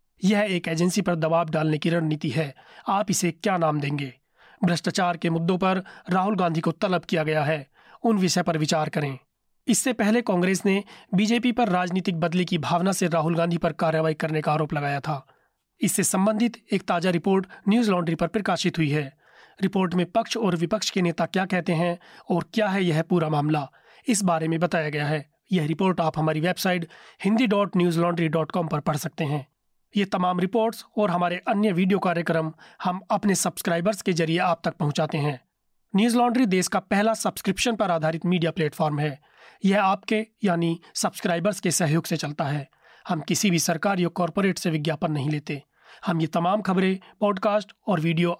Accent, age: native, 30-49